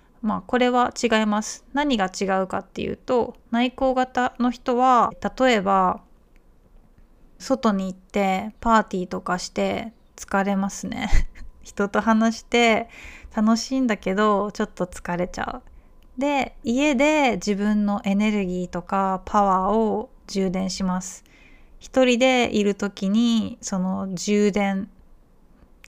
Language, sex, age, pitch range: Japanese, female, 20-39, 195-245 Hz